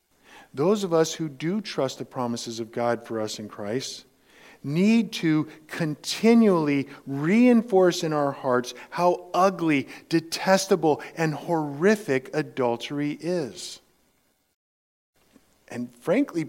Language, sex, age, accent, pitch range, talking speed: English, male, 50-69, American, 125-185 Hz, 110 wpm